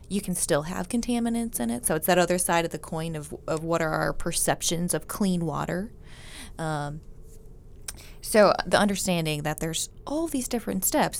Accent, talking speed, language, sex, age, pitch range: American, 180 wpm, English, female, 20-39, 160-195 Hz